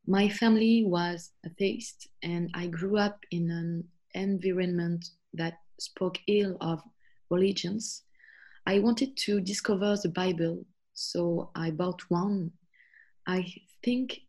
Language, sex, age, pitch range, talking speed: English, female, 20-39, 170-205 Hz, 120 wpm